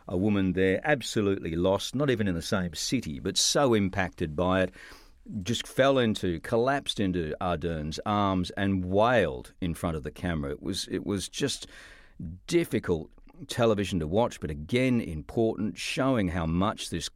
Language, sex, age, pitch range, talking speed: English, male, 50-69, 90-110 Hz, 160 wpm